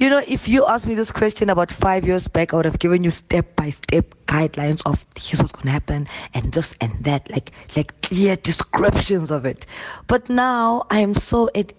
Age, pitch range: 20-39, 140-175 Hz